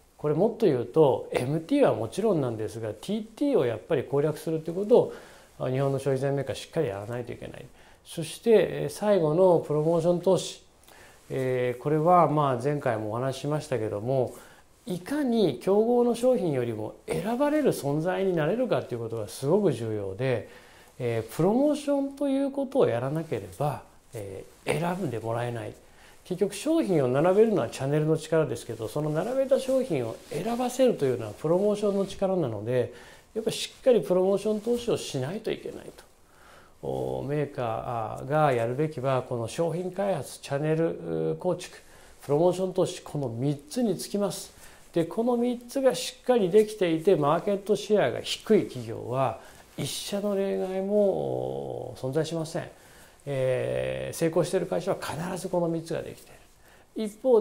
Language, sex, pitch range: Japanese, male, 130-205 Hz